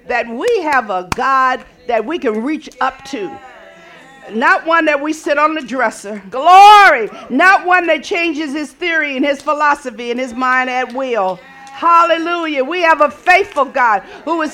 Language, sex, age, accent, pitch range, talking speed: English, female, 50-69, American, 300-435 Hz, 175 wpm